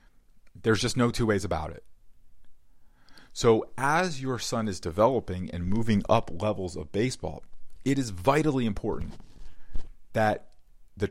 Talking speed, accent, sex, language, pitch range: 135 wpm, American, male, English, 85-110 Hz